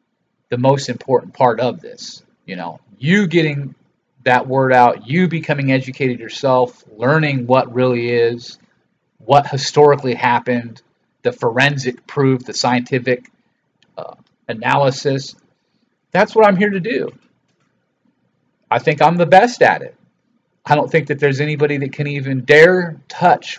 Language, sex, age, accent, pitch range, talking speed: English, male, 40-59, American, 125-155 Hz, 140 wpm